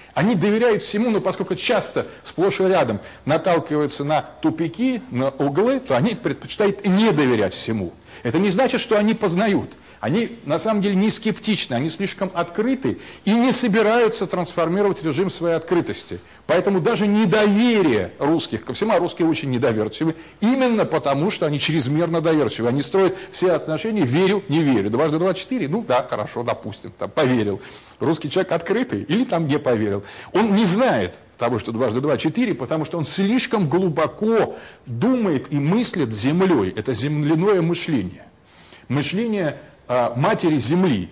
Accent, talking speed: native, 150 wpm